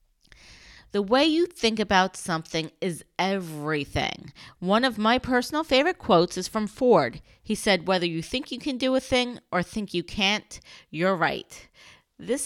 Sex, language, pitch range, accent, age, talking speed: female, English, 175-230 Hz, American, 30-49, 165 wpm